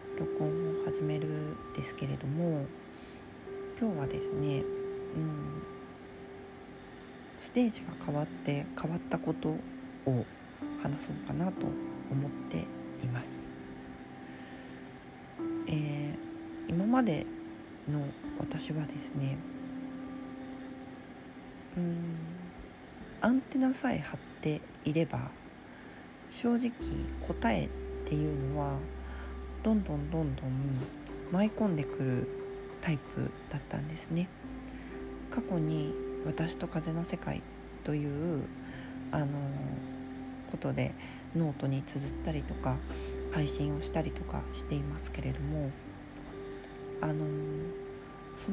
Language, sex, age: Japanese, female, 40-59